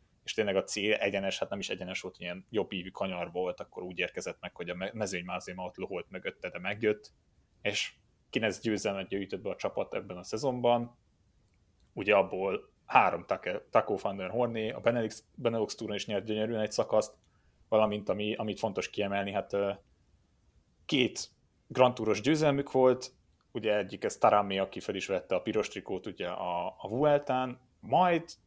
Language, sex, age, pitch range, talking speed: Hungarian, male, 30-49, 95-115 Hz, 160 wpm